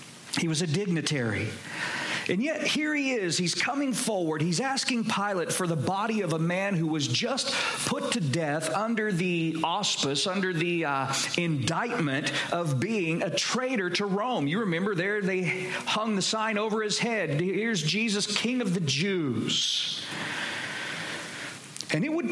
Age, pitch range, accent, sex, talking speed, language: 40-59, 170-230 Hz, American, male, 160 wpm, English